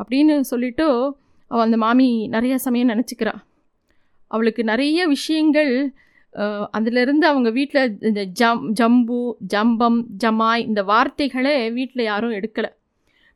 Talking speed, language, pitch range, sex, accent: 110 wpm, Tamil, 220-275 Hz, female, native